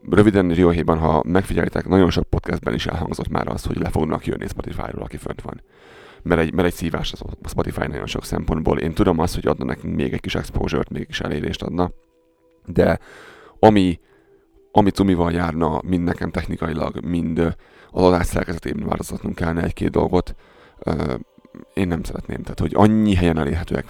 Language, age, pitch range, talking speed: Hungarian, 30-49, 85-95 Hz, 170 wpm